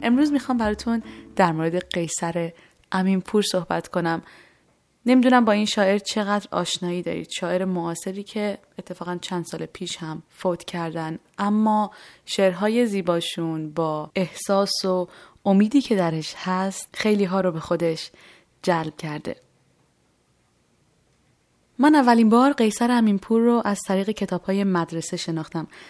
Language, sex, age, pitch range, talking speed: Persian, female, 20-39, 170-205 Hz, 125 wpm